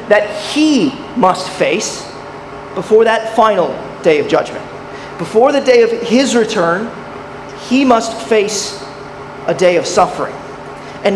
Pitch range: 180-230 Hz